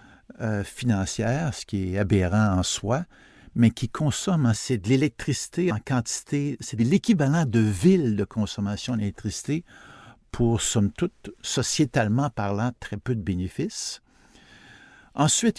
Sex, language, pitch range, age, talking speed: male, French, 105-145 Hz, 60-79, 125 wpm